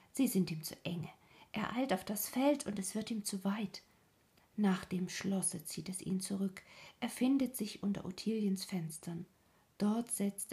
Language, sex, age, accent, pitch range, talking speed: German, female, 50-69, German, 175-205 Hz, 175 wpm